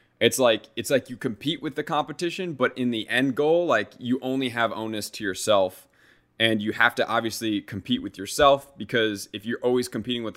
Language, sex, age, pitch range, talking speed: English, male, 20-39, 105-130 Hz, 205 wpm